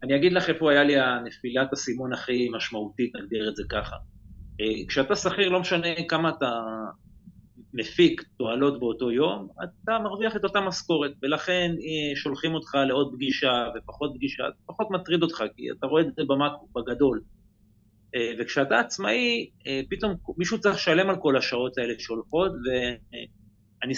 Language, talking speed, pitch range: Hebrew, 155 wpm, 120-155 Hz